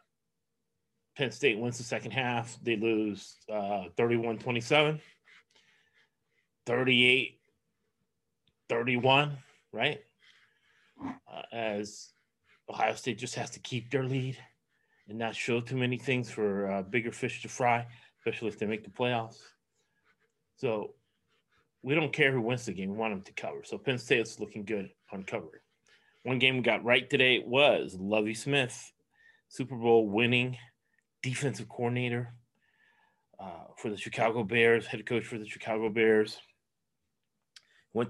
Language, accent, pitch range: English, American, 110-130 Hz